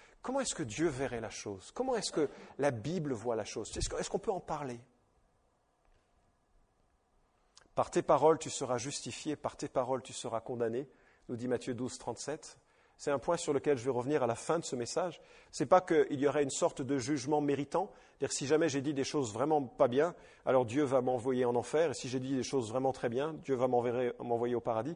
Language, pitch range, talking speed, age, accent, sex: English, 130-160 Hz, 225 wpm, 50-69, French, male